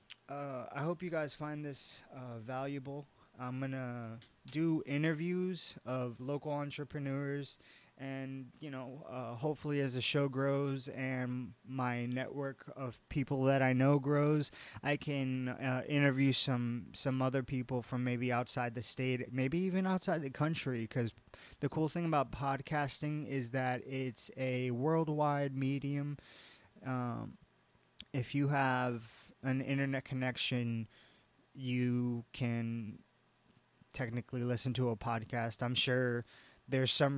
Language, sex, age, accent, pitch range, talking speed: English, male, 20-39, American, 125-145 Hz, 135 wpm